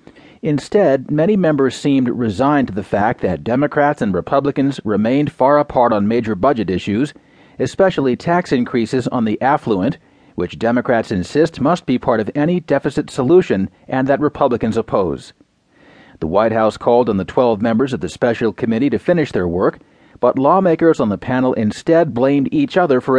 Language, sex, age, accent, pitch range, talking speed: English, male, 40-59, American, 120-150 Hz, 170 wpm